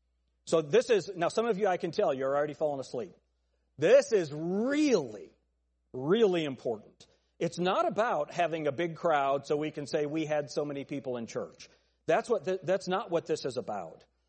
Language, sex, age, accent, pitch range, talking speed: English, male, 40-59, American, 145-195 Hz, 195 wpm